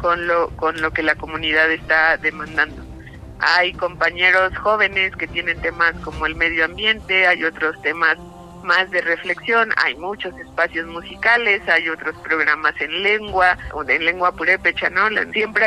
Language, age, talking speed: Spanish, 50-69, 155 wpm